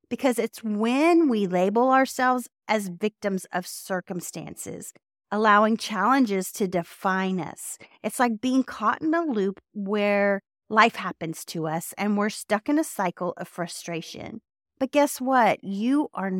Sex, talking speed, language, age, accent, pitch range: female, 145 wpm, English, 40-59, American, 190-255 Hz